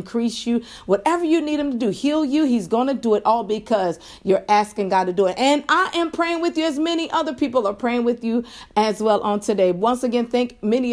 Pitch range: 215-265 Hz